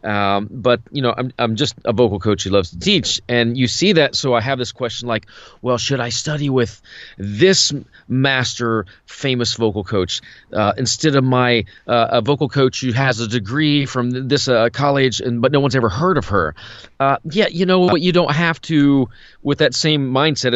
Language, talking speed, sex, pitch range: English, 205 wpm, male, 110-140 Hz